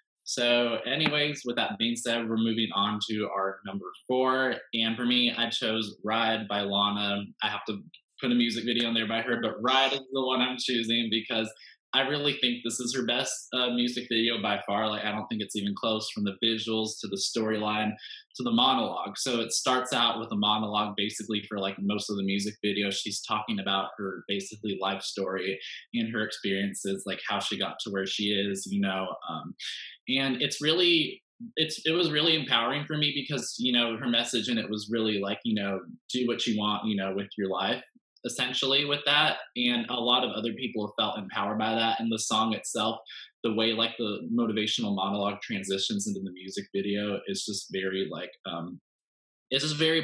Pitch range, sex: 105-120 Hz, male